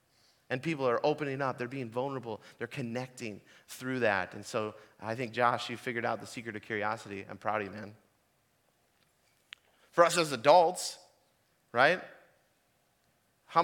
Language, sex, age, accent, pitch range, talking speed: English, male, 30-49, American, 125-165 Hz, 155 wpm